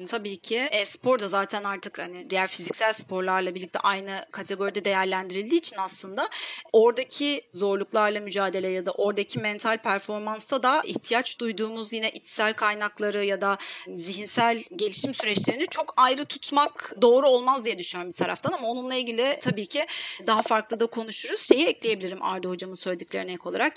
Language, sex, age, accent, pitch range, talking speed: Turkish, female, 30-49, native, 205-265 Hz, 155 wpm